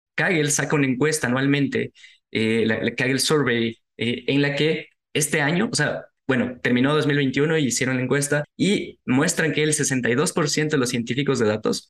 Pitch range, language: 120-150 Hz, Spanish